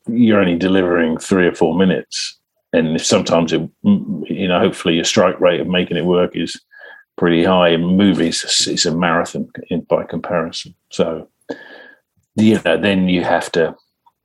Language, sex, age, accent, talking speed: English, male, 50-69, British, 165 wpm